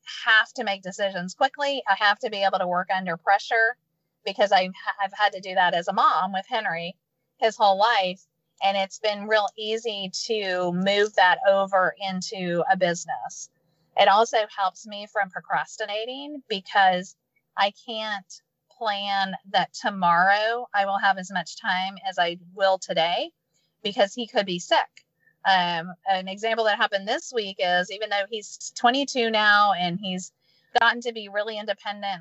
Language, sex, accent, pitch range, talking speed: English, female, American, 180-215 Hz, 160 wpm